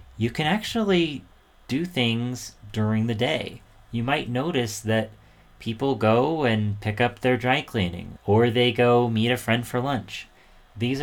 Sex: male